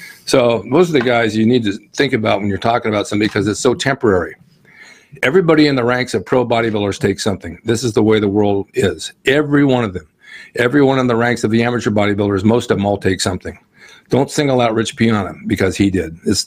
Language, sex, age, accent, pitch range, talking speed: English, male, 50-69, American, 105-125 Hz, 225 wpm